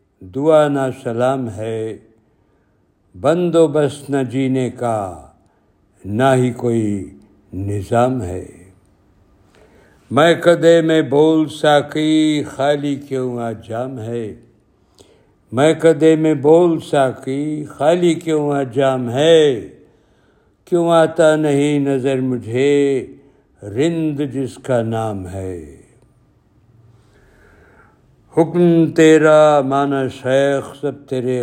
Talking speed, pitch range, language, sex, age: 95 wpm, 115-150 Hz, Urdu, male, 60-79